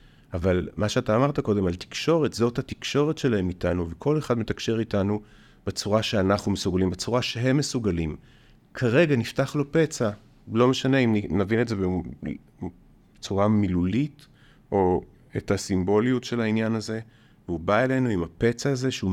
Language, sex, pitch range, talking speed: Hebrew, male, 90-125 Hz, 145 wpm